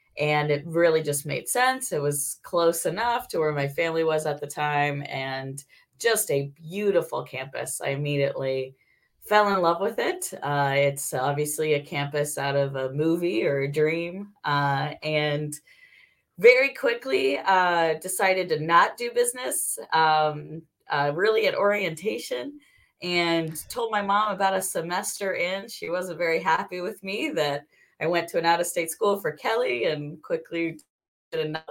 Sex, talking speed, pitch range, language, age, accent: female, 155 wpm, 145-190 Hz, English, 20-39, American